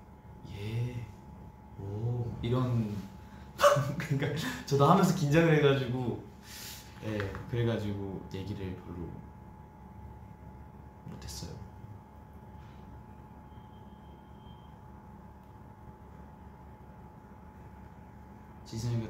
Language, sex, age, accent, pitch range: Korean, male, 20-39, native, 100-140 Hz